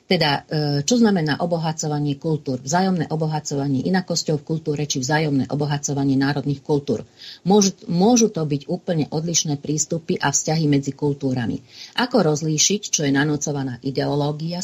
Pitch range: 145-195 Hz